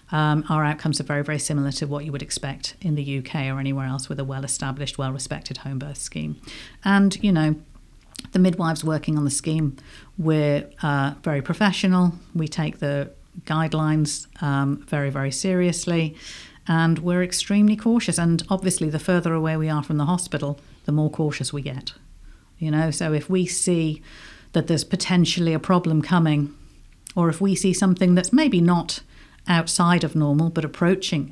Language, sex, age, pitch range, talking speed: English, female, 50-69, 145-175 Hz, 175 wpm